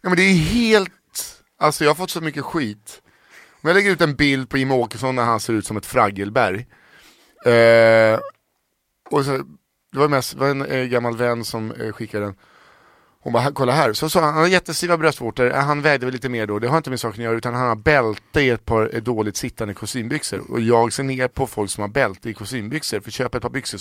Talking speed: 220 wpm